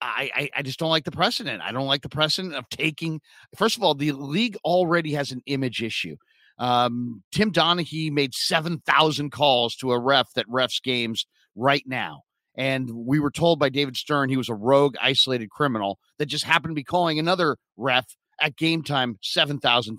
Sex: male